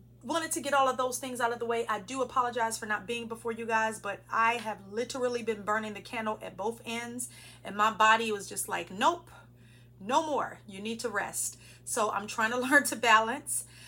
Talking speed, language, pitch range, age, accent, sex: 220 wpm, English, 195-240 Hz, 40-59, American, female